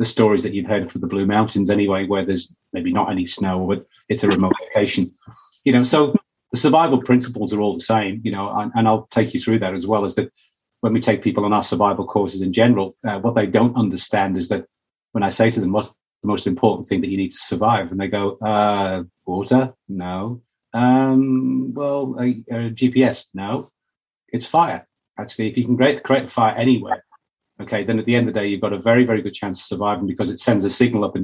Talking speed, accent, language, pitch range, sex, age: 235 wpm, British, English, 95-120 Hz, male, 30-49